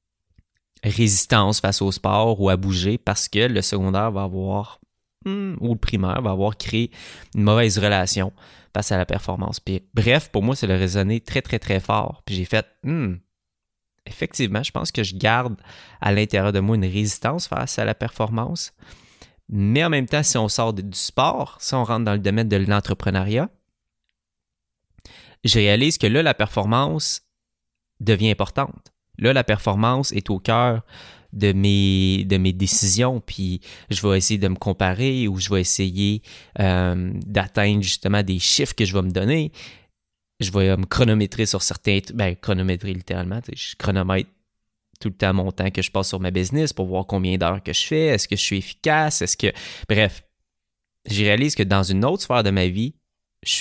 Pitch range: 95-115 Hz